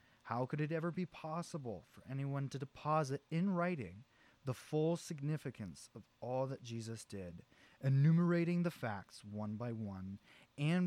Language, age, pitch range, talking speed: English, 20-39, 110-145 Hz, 150 wpm